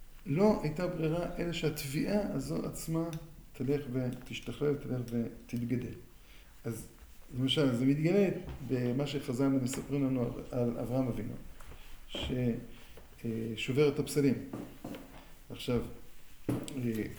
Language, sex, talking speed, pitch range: Hebrew, male, 85 wpm, 125-150 Hz